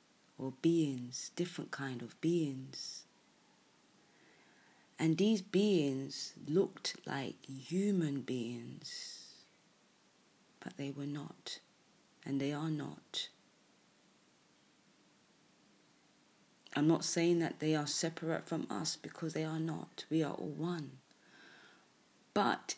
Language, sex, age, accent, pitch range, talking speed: English, female, 30-49, British, 140-175 Hz, 105 wpm